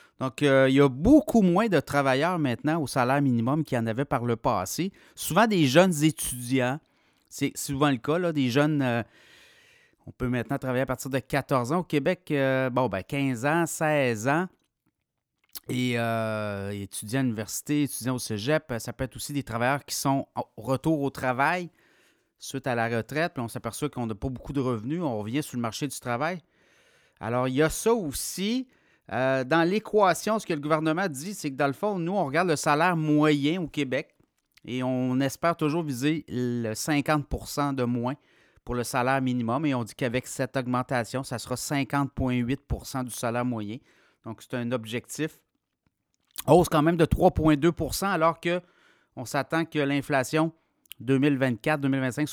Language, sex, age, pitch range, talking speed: French, male, 30-49, 125-155 Hz, 180 wpm